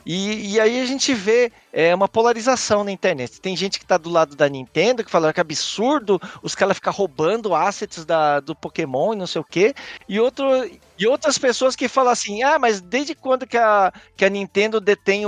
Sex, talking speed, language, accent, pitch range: male, 200 wpm, Portuguese, Brazilian, 175-235 Hz